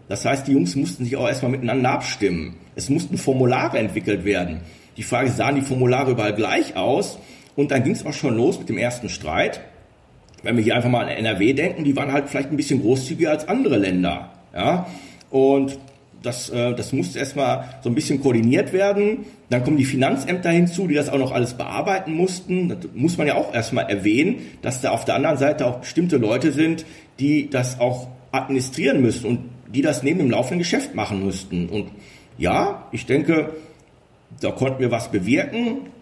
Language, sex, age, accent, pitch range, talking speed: German, male, 40-59, German, 115-150 Hz, 195 wpm